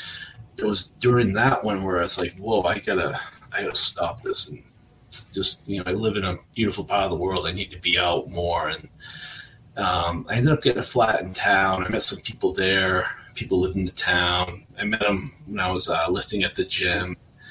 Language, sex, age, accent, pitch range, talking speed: English, male, 30-49, American, 90-110 Hz, 225 wpm